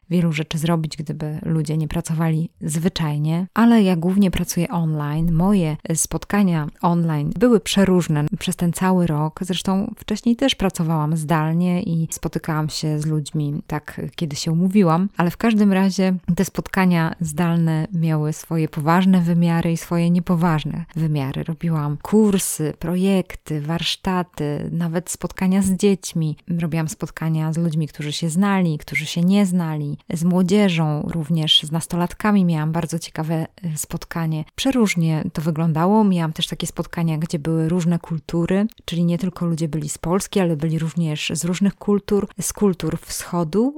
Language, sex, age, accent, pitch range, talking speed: Polish, female, 20-39, native, 160-190 Hz, 145 wpm